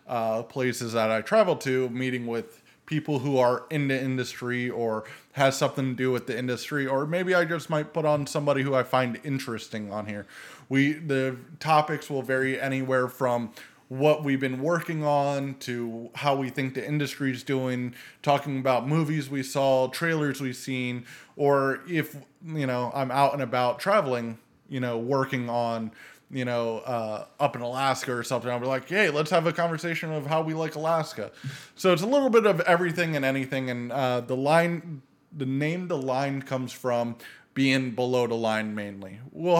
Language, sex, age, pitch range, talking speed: English, male, 20-39, 125-150 Hz, 185 wpm